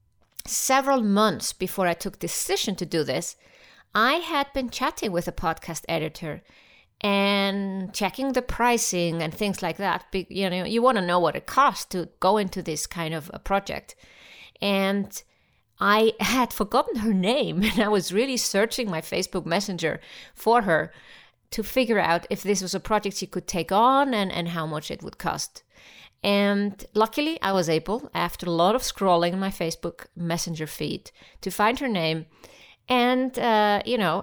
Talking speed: 175 wpm